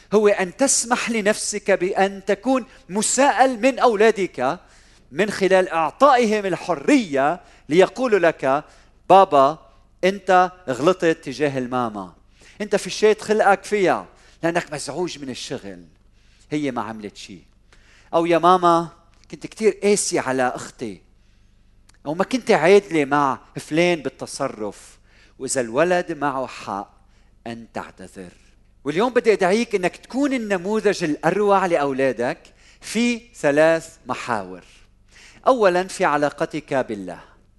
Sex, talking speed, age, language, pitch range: male, 110 wpm, 40-59, Arabic, 130-200 Hz